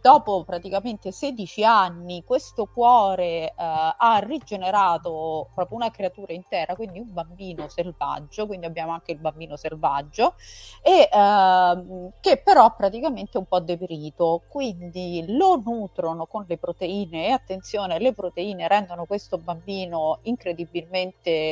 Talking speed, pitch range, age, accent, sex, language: 130 wpm, 165-225 Hz, 30-49, native, female, Italian